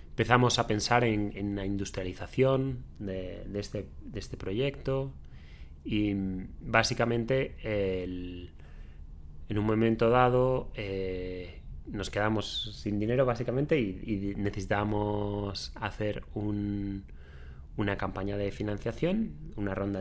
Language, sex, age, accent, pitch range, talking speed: Italian, male, 30-49, Spanish, 95-115 Hz, 100 wpm